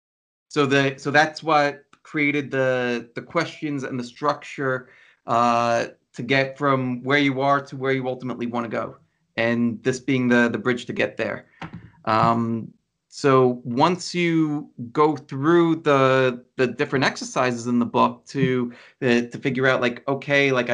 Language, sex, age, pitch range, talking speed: English, male, 30-49, 120-145 Hz, 160 wpm